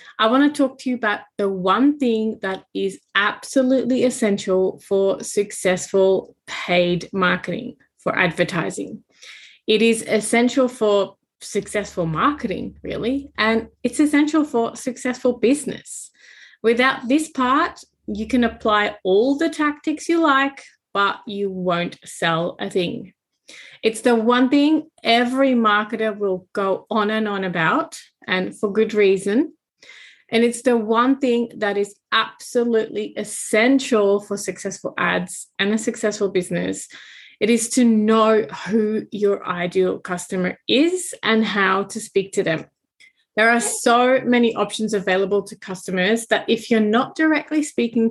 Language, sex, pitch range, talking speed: English, female, 200-255 Hz, 140 wpm